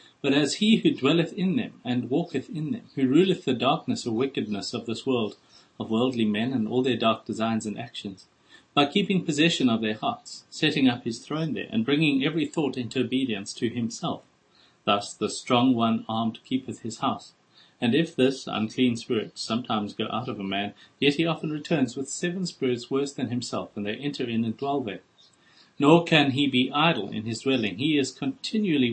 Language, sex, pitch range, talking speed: English, male, 115-150 Hz, 200 wpm